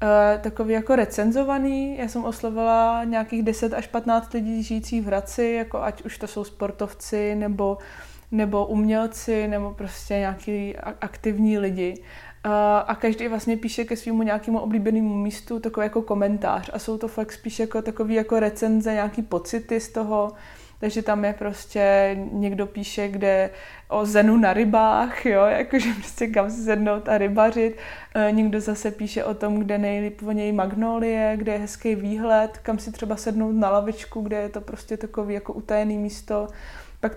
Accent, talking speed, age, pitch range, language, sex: native, 165 wpm, 20-39, 210-230 Hz, Czech, female